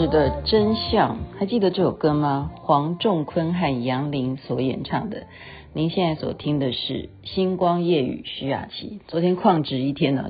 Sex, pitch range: female, 140-190 Hz